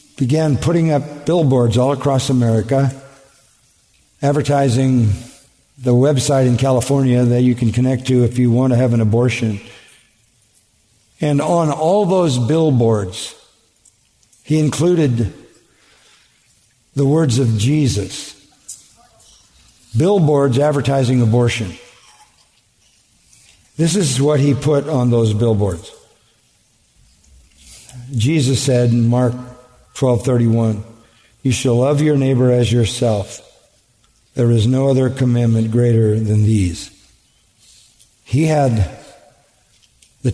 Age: 50-69